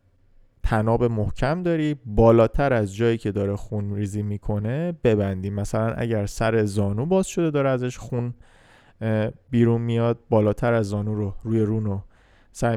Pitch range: 105-135 Hz